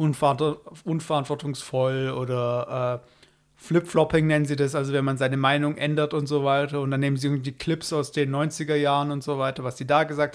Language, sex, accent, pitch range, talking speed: German, male, German, 140-160 Hz, 190 wpm